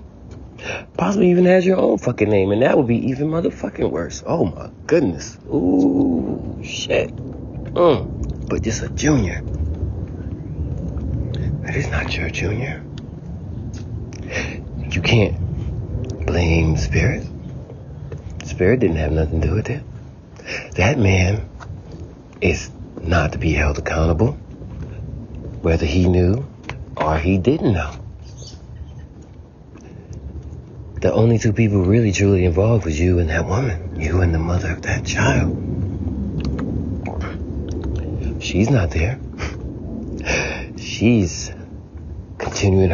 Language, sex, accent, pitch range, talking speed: English, male, American, 80-110 Hz, 110 wpm